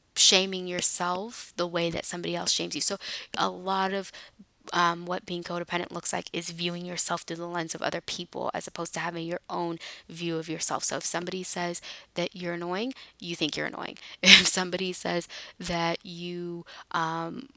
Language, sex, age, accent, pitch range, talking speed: English, female, 10-29, American, 170-195 Hz, 185 wpm